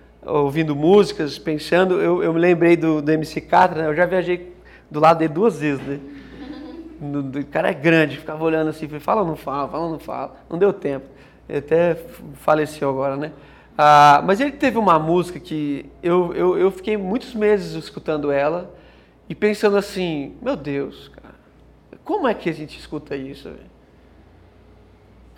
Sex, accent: male, Brazilian